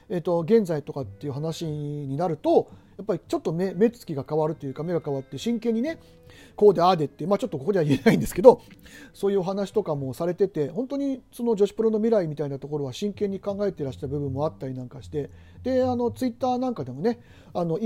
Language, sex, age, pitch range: Japanese, male, 40-59, 145-220 Hz